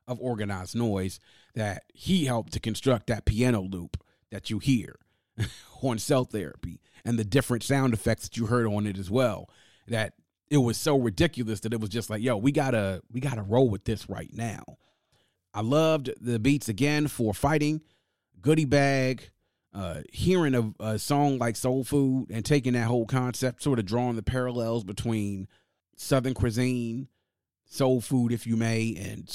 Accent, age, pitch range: American, 30-49, 110-125 Hz